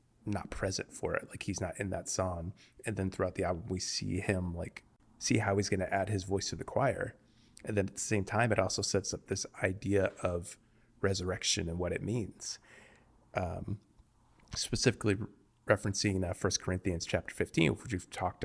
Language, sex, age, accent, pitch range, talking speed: English, male, 30-49, American, 90-105 Hz, 200 wpm